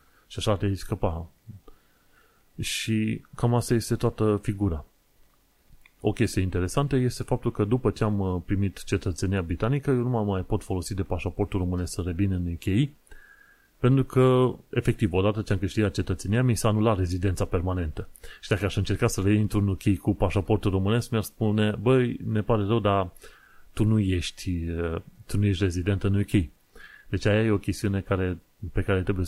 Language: Romanian